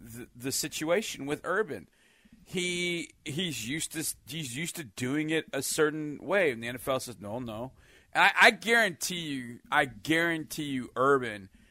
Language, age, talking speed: English, 40-59, 160 wpm